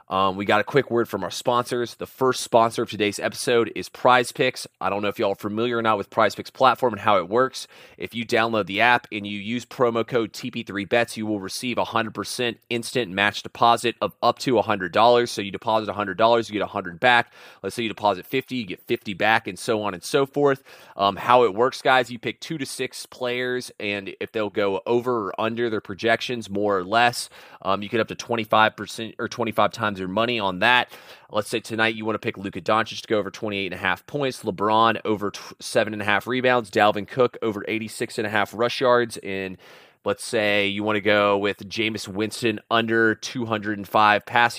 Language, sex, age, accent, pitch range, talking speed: English, male, 30-49, American, 105-120 Hz, 225 wpm